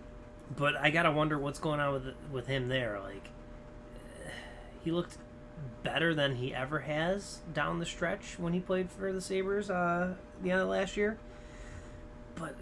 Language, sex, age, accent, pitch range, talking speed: English, male, 20-39, American, 120-145 Hz, 160 wpm